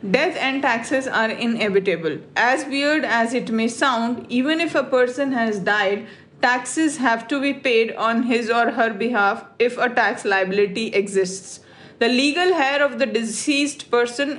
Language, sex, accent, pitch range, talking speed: English, female, Indian, 225-275 Hz, 165 wpm